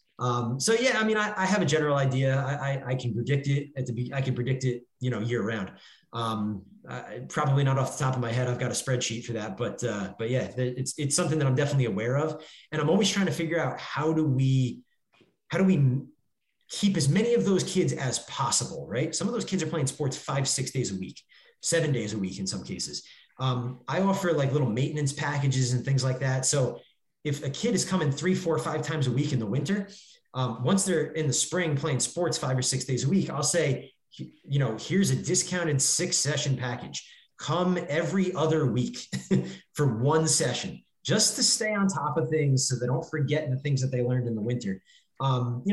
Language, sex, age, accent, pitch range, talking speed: English, male, 30-49, American, 125-170 Hz, 230 wpm